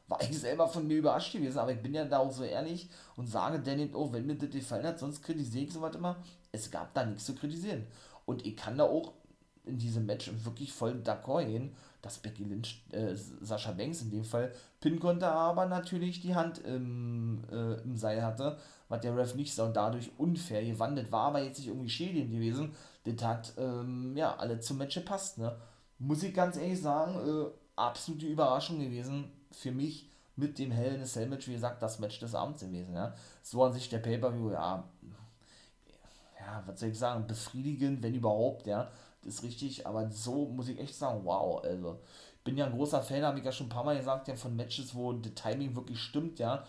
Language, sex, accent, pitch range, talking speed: German, male, German, 115-145 Hz, 210 wpm